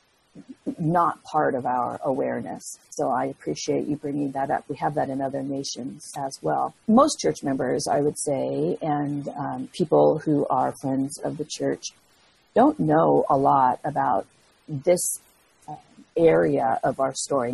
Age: 50-69